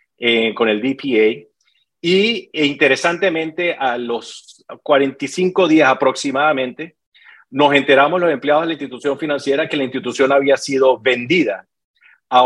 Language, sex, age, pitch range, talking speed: Spanish, male, 40-59, 125-155 Hz, 130 wpm